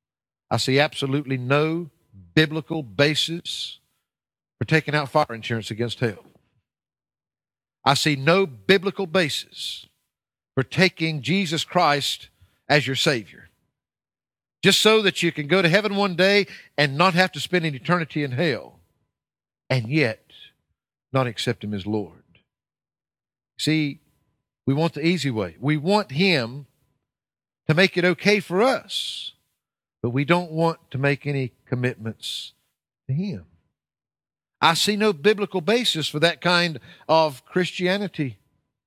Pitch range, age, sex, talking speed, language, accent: 135-180 Hz, 50-69, male, 135 wpm, English, American